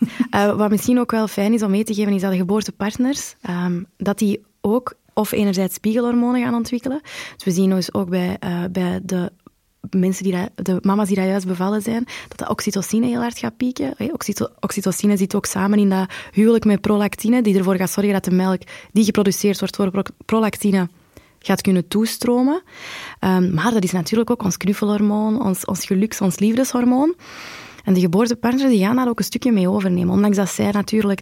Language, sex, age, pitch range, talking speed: Dutch, female, 20-39, 190-230 Hz, 185 wpm